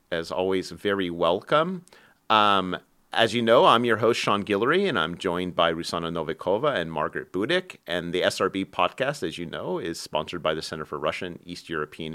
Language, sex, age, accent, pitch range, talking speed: English, male, 40-59, American, 85-115 Hz, 190 wpm